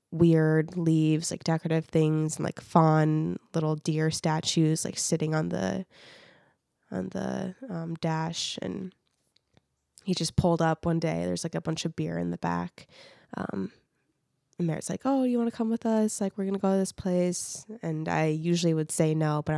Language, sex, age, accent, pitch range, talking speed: English, female, 20-39, American, 155-180 Hz, 185 wpm